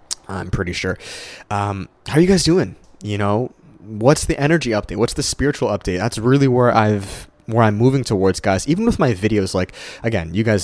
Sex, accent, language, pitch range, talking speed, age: male, American, English, 95-130 Hz, 205 wpm, 20-39